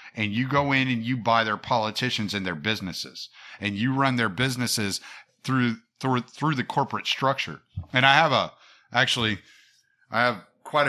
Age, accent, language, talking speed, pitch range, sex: 50-69, American, English, 170 wpm, 105-130 Hz, male